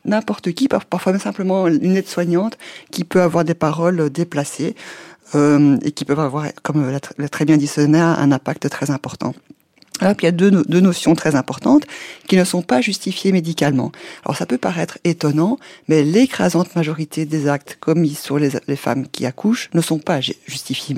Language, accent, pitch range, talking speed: French, French, 145-185 Hz, 185 wpm